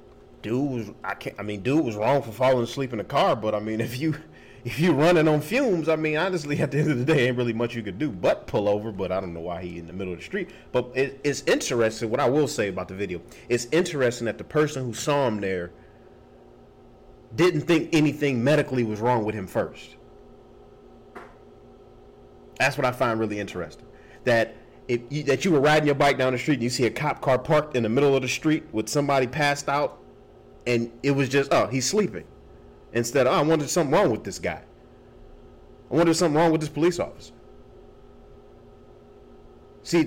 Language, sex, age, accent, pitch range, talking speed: English, male, 30-49, American, 105-155 Hz, 220 wpm